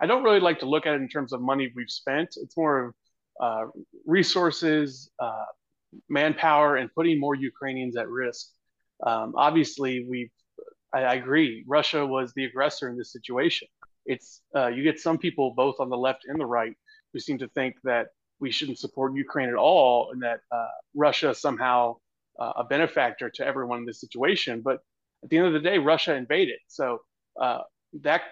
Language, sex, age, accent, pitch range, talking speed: English, male, 30-49, American, 130-160 Hz, 190 wpm